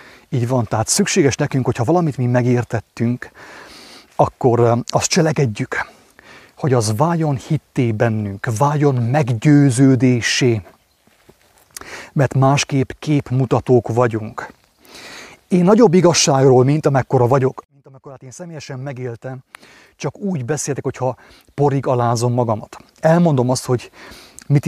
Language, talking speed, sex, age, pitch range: English, 110 wpm, male, 30-49, 120-145 Hz